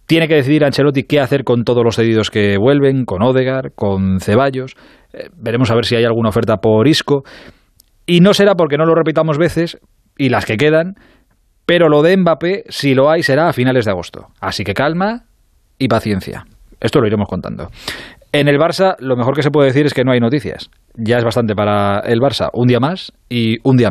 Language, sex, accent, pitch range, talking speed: Spanish, male, Spanish, 115-155 Hz, 215 wpm